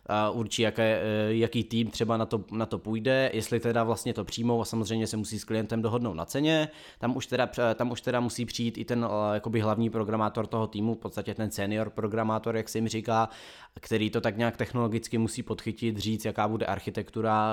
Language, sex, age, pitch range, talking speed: Czech, male, 20-39, 110-120 Hz, 200 wpm